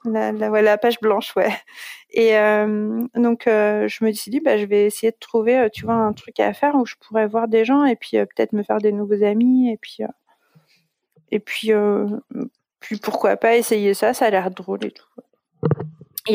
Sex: female